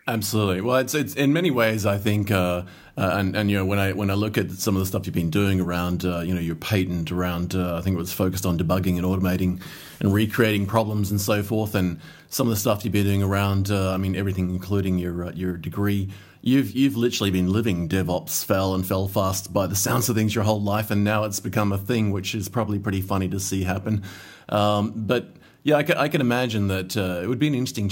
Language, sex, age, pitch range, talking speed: English, male, 30-49, 95-110 Hz, 250 wpm